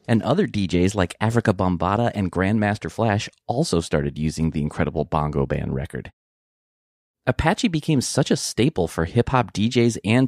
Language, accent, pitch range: English, American, 90-135 Hz